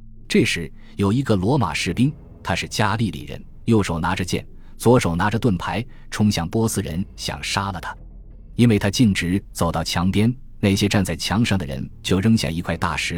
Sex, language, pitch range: male, Chinese, 85-110 Hz